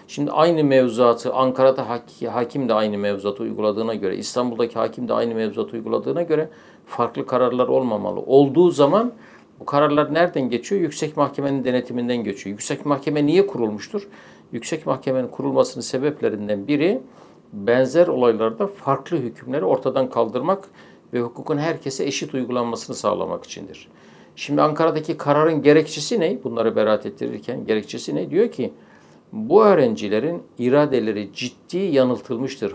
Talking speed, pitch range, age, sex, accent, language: 130 wpm, 115-150 Hz, 60-79, male, native, Turkish